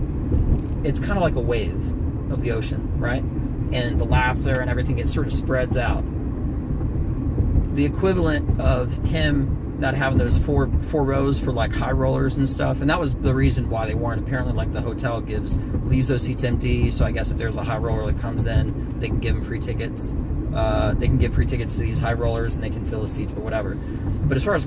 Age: 30-49